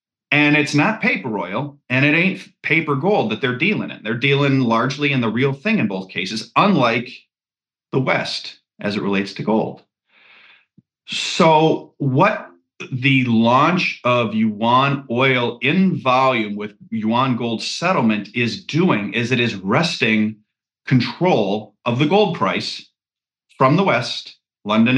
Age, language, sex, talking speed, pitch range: 40-59, English, male, 145 wpm, 115-150 Hz